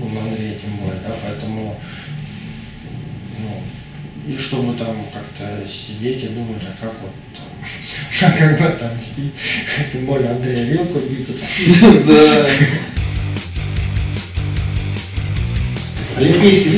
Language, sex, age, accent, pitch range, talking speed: Russian, male, 20-39, native, 120-155 Hz, 95 wpm